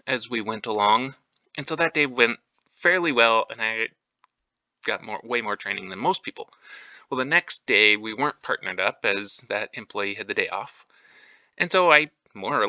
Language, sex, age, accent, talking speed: English, male, 30-49, American, 195 wpm